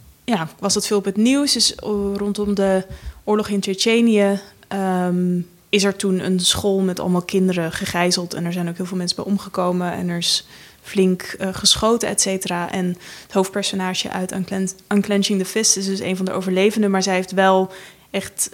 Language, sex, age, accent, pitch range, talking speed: Dutch, female, 20-39, Dutch, 180-200 Hz, 190 wpm